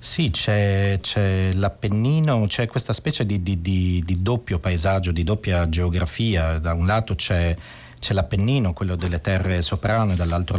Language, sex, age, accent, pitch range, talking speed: Italian, male, 30-49, native, 90-110 Hz, 155 wpm